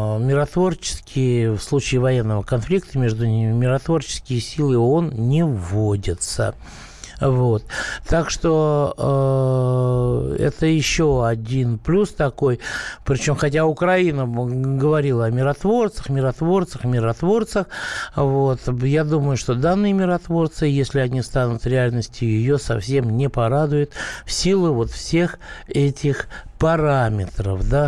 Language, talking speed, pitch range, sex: Russian, 110 wpm, 115-155 Hz, male